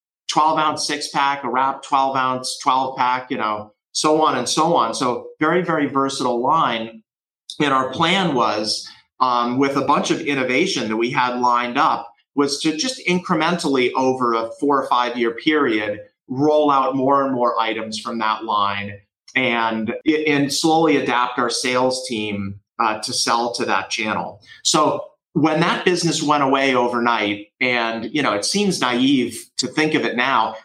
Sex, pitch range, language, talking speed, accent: male, 115-145 Hz, English, 165 wpm, American